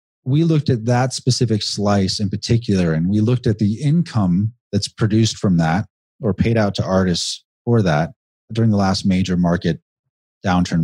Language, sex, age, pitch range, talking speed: English, male, 30-49, 95-120 Hz, 170 wpm